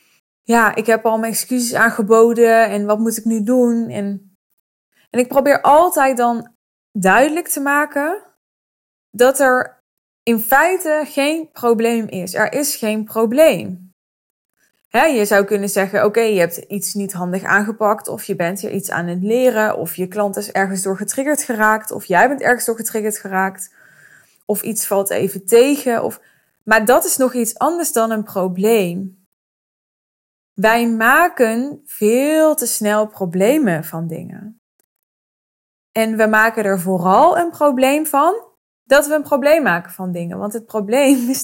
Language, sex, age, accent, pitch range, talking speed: Dutch, female, 20-39, Dutch, 200-265 Hz, 155 wpm